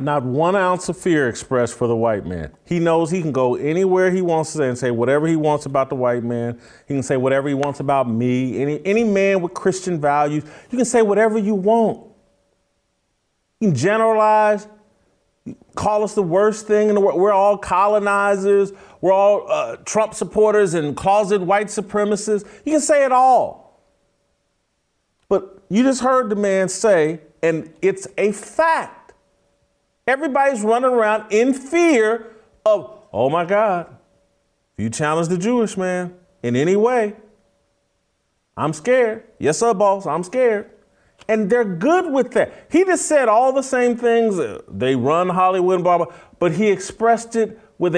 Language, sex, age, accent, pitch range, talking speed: English, male, 40-59, American, 155-215 Hz, 170 wpm